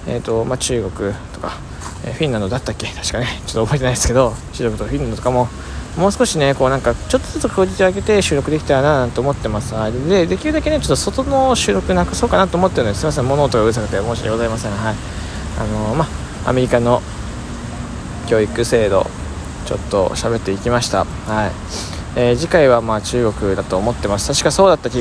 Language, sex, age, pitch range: Japanese, male, 20-39, 105-140 Hz